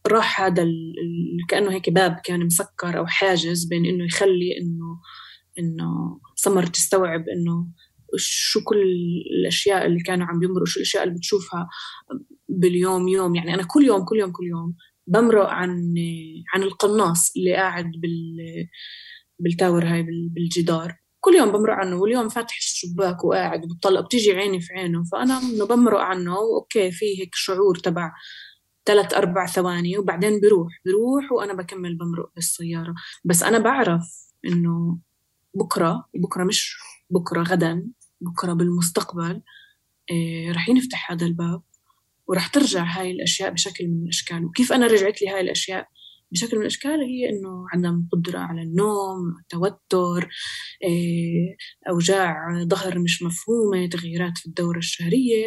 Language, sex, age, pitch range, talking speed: Arabic, female, 20-39, 170-200 Hz, 140 wpm